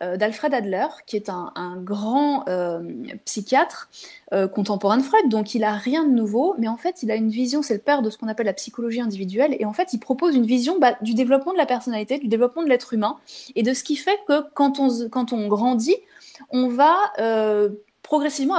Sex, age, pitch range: female, 20-39, 220-290 Hz